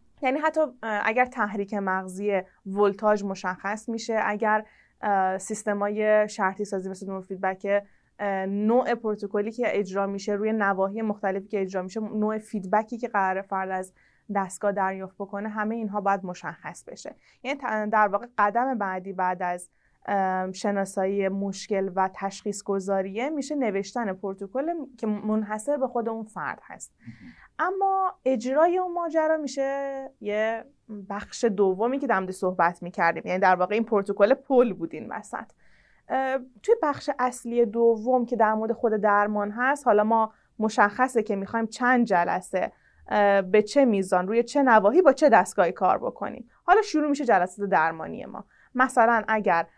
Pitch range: 195-235 Hz